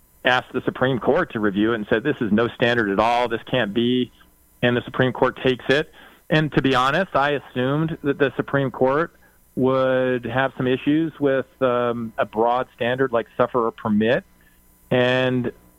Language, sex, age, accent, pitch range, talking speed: English, male, 40-59, American, 100-125 Hz, 180 wpm